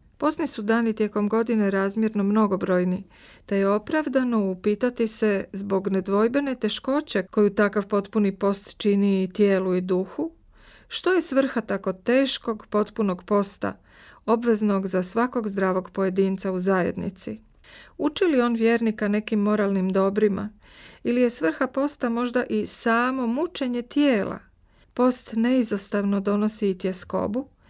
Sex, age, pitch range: female, 50-69, 195-240 Hz